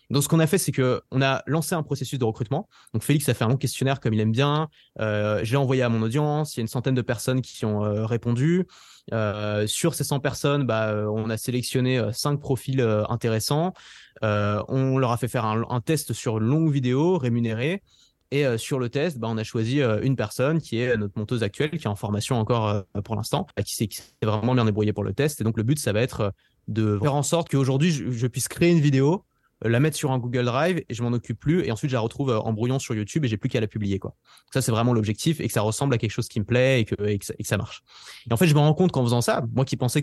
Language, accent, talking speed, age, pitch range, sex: French, French, 280 wpm, 20-39, 110-145 Hz, male